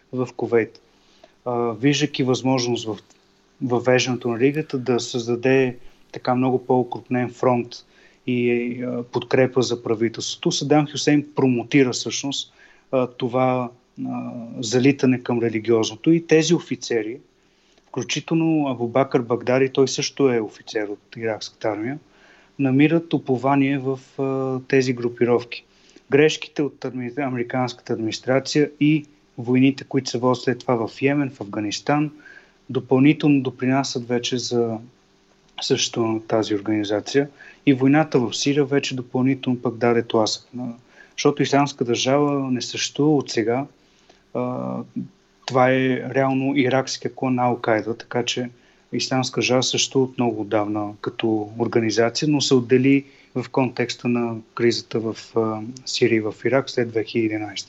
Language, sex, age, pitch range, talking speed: English, male, 30-49, 120-135 Hz, 115 wpm